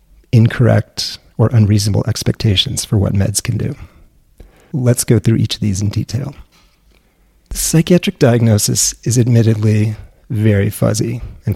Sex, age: male, 30-49